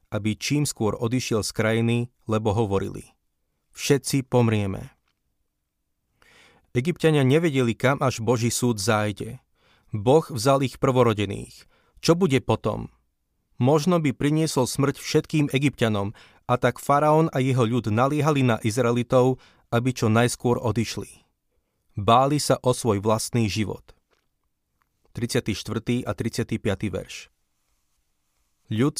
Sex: male